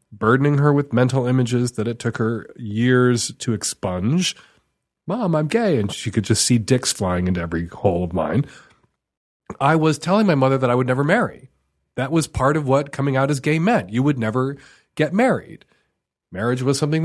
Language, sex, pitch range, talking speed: English, male, 125-185 Hz, 195 wpm